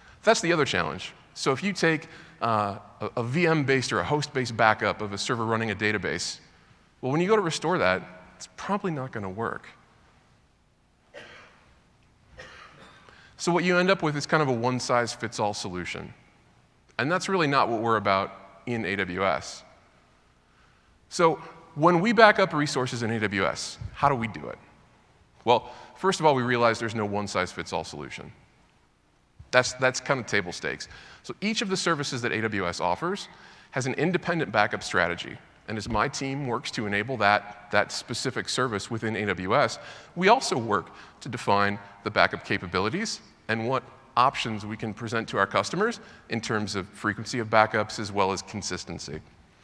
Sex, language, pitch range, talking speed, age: male, English, 105-150 Hz, 165 wpm, 20-39